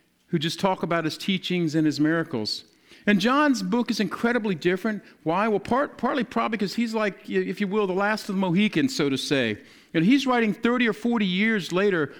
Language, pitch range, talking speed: English, 175-235 Hz, 200 wpm